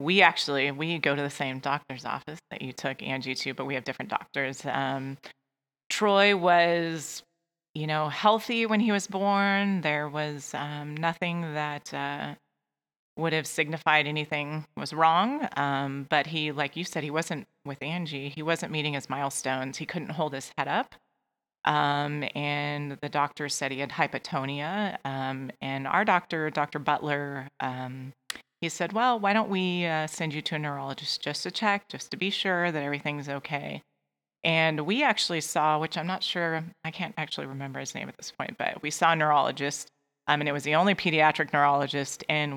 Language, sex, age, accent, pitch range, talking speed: English, female, 30-49, American, 140-175 Hz, 185 wpm